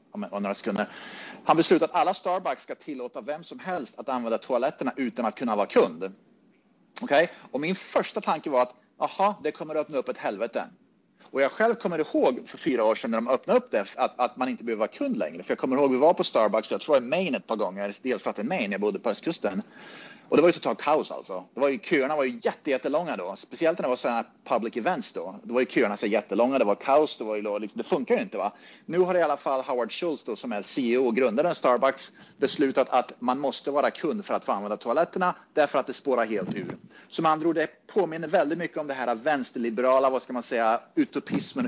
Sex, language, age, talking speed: male, Swedish, 30-49, 245 wpm